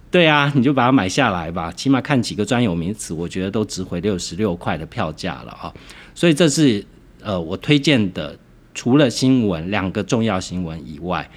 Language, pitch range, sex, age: Chinese, 90-140 Hz, male, 50-69